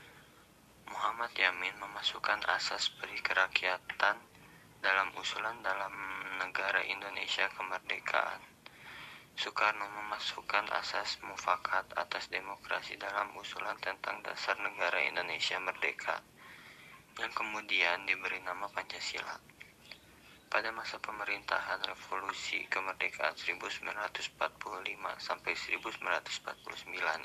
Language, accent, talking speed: Indonesian, native, 75 wpm